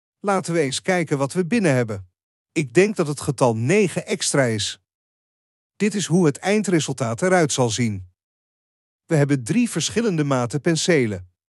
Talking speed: 155 wpm